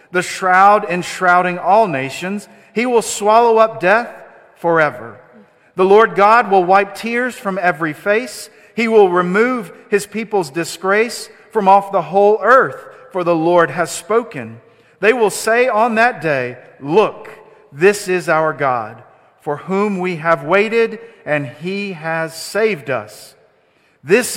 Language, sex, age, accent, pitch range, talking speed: English, male, 50-69, American, 135-200 Hz, 145 wpm